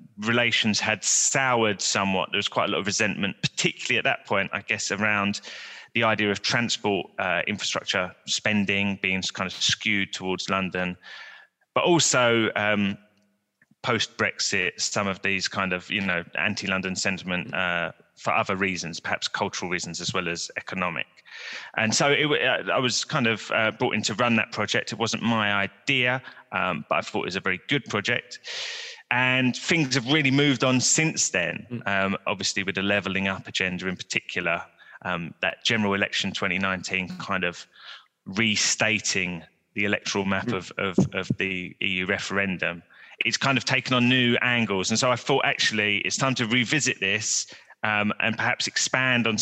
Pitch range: 95-120 Hz